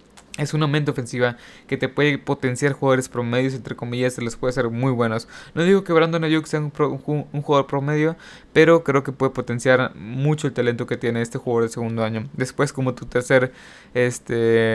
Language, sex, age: Spanish, male, 20-39